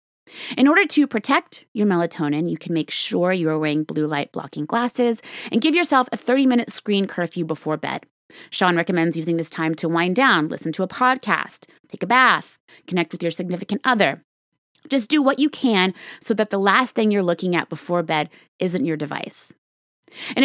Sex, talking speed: female, 190 wpm